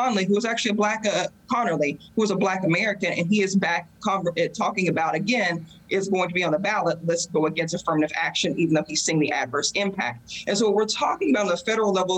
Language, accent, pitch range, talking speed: English, American, 170-210 Hz, 240 wpm